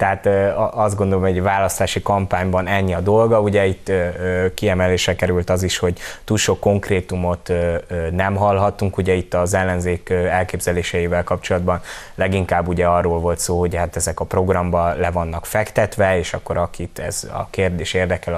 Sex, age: male, 20-39